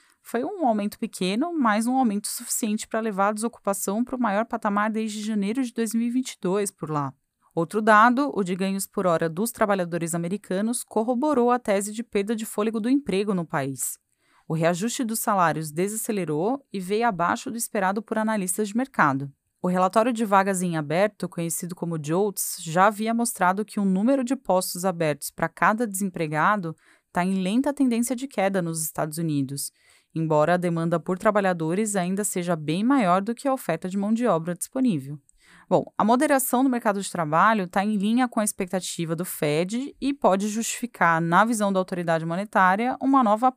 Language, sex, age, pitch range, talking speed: Portuguese, female, 20-39, 175-230 Hz, 180 wpm